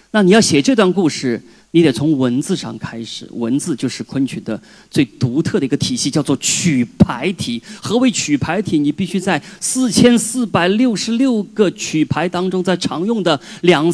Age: 30-49